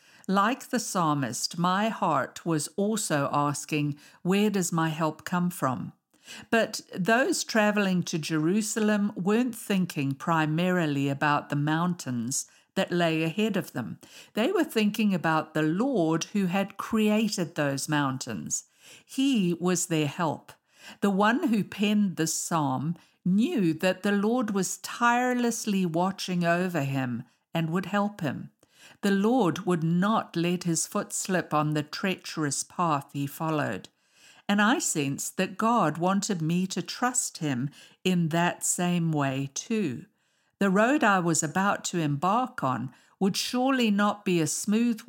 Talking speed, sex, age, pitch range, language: 140 wpm, female, 50-69, 155-205 Hz, English